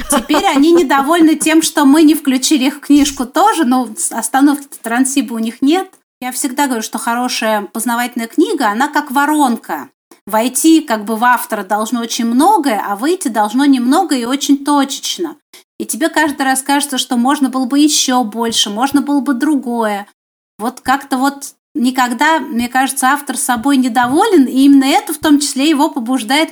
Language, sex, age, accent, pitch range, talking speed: Russian, female, 30-49, native, 245-300 Hz, 165 wpm